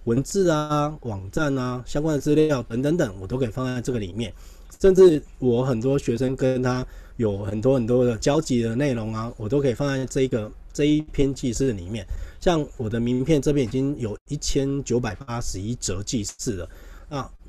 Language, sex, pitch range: Chinese, male, 105-140 Hz